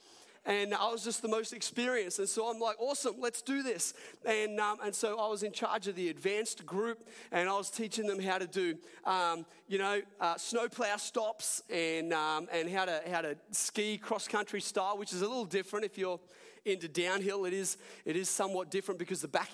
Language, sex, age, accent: English, male, 30-49, Australian